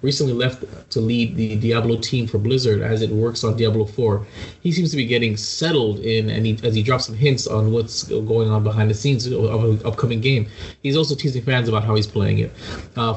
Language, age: English, 20-39